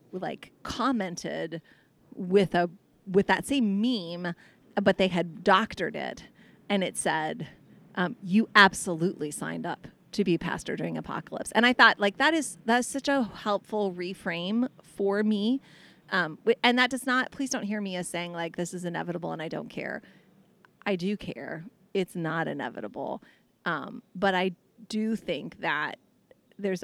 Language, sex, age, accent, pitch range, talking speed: English, female, 30-49, American, 170-215 Hz, 160 wpm